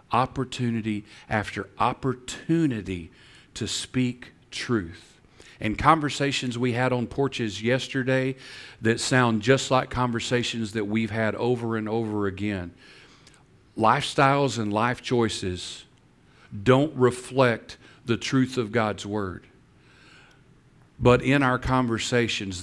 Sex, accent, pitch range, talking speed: male, American, 105-125 Hz, 105 wpm